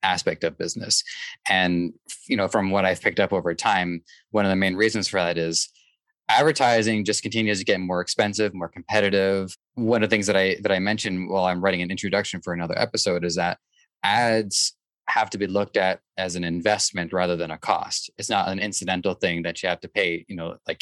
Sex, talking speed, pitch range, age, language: male, 215 wpm, 90-110 Hz, 20-39, English